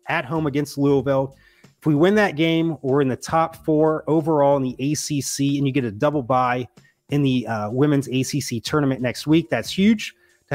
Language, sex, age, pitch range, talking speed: English, male, 30-49, 125-165 Hz, 200 wpm